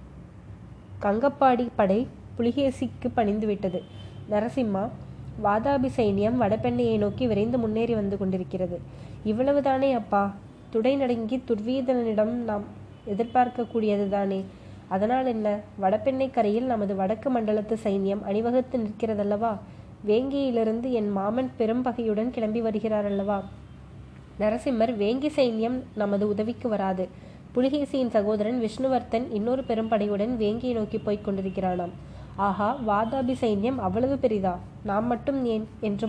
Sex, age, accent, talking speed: female, 20-39, native, 105 wpm